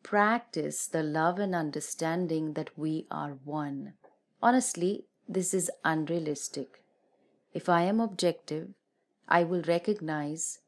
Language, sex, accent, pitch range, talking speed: English, female, Indian, 150-185 Hz, 110 wpm